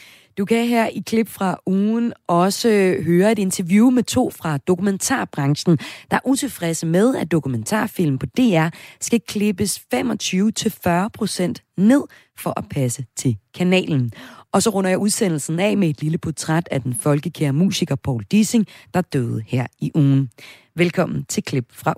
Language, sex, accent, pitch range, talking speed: Danish, female, native, 145-215 Hz, 155 wpm